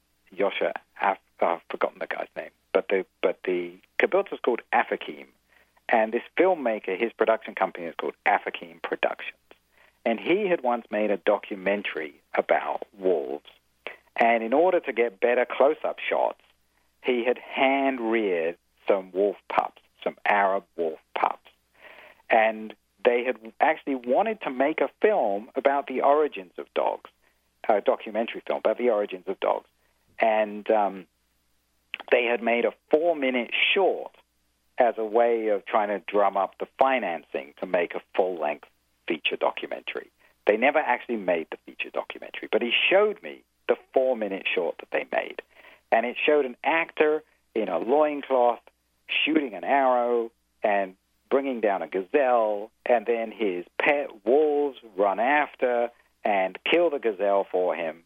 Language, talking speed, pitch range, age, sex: English, 150 wpm, 95-135 Hz, 50-69, male